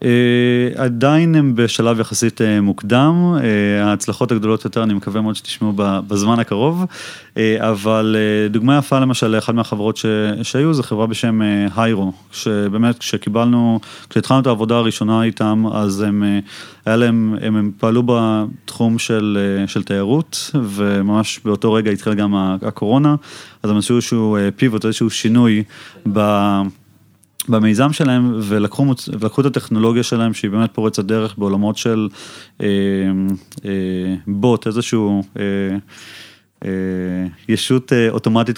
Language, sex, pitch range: Hebrew, male, 105-115 Hz